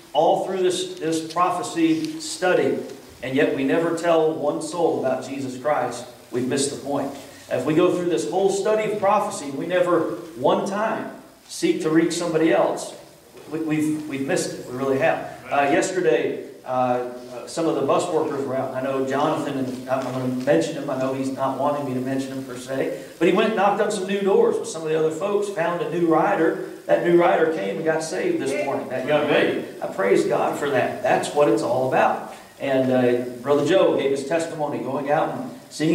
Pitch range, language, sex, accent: 135-175 Hz, English, male, American